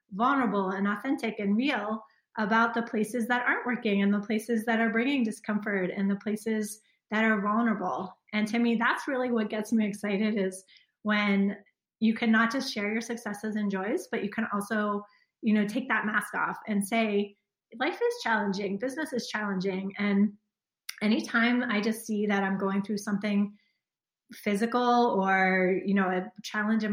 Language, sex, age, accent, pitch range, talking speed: English, female, 30-49, American, 195-230 Hz, 175 wpm